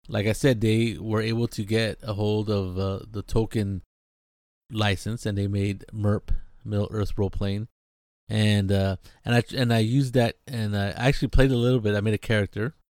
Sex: male